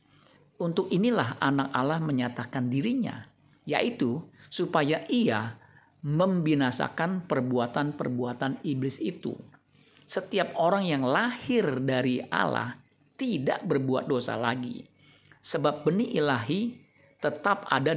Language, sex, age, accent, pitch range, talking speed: Indonesian, male, 50-69, native, 130-165 Hz, 95 wpm